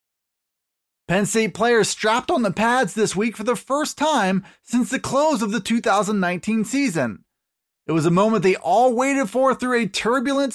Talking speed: 175 wpm